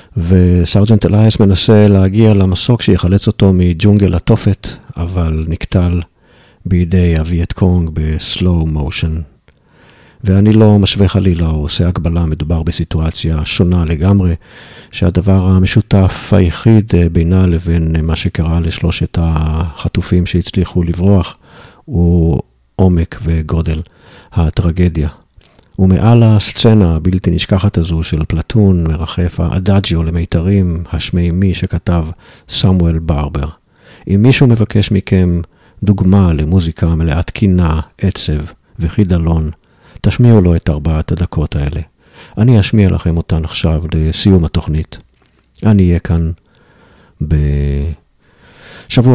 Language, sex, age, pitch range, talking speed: Hebrew, male, 50-69, 80-100 Hz, 100 wpm